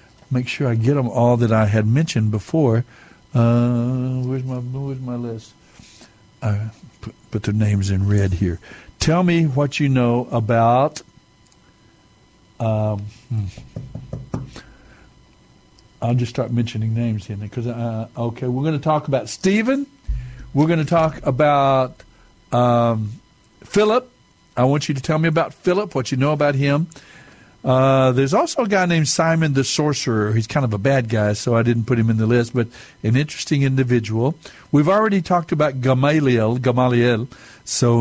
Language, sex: English, male